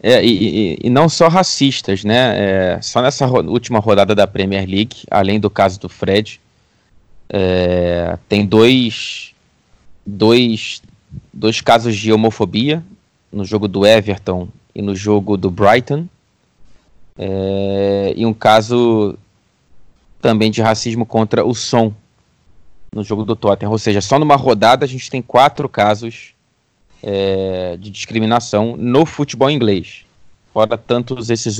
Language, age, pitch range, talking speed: Portuguese, 20-39, 100-120 Hz, 125 wpm